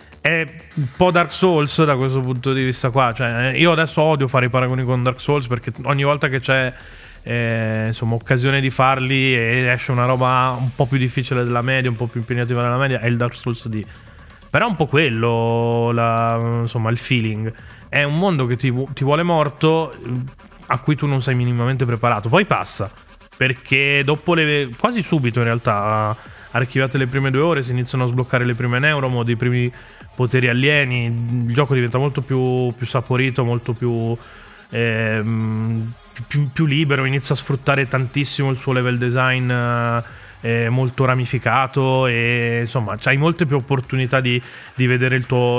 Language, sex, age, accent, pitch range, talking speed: Italian, male, 20-39, native, 120-135 Hz, 180 wpm